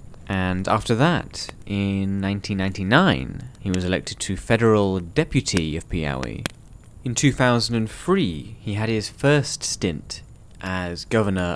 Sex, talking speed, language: male, 115 wpm, English